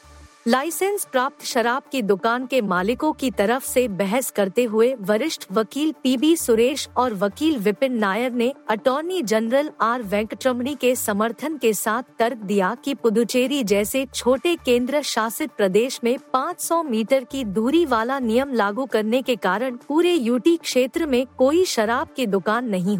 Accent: native